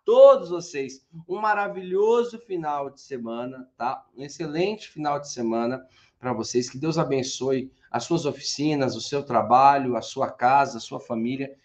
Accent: Brazilian